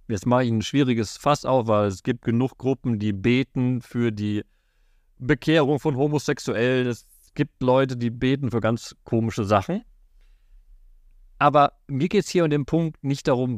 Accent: German